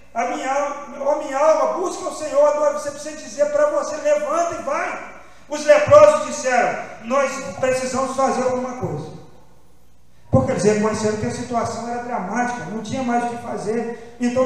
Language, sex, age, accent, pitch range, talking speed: Portuguese, male, 40-59, Brazilian, 205-265 Hz, 160 wpm